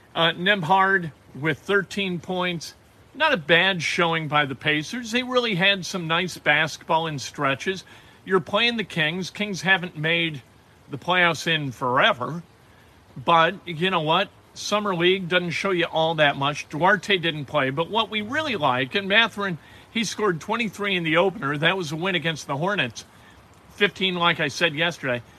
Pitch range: 140-190 Hz